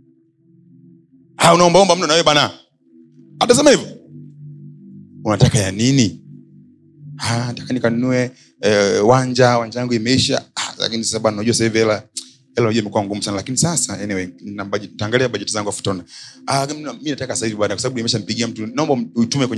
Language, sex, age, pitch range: Swahili, male, 30-49, 110-155 Hz